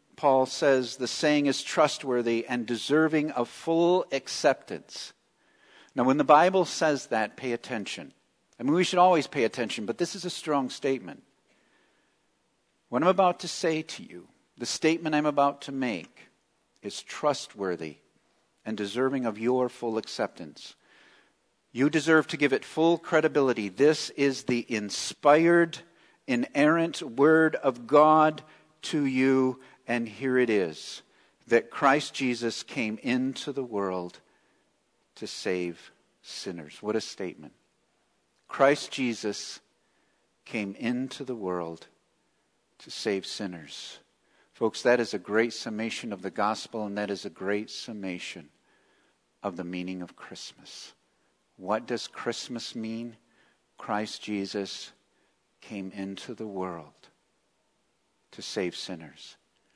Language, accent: English, American